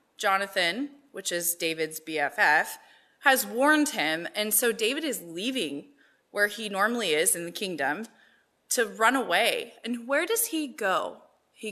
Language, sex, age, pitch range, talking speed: English, female, 20-39, 200-290 Hz, 150 wpm